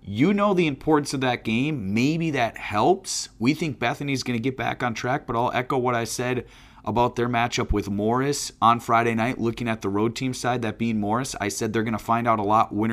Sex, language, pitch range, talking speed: male, English, 100-125 Hz, 240 wpm